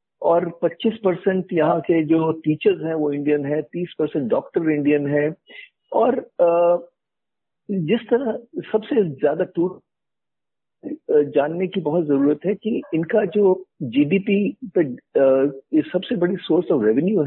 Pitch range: 150-220 Hz